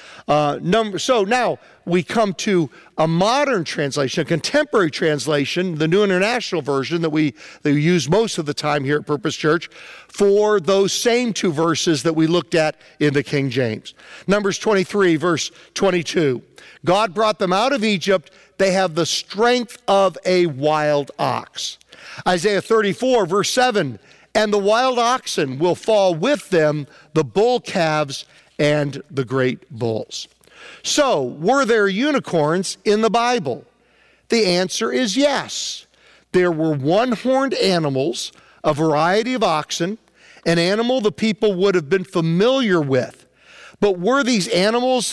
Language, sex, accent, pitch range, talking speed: English, male, American, 160-215 Hz, 145 wpm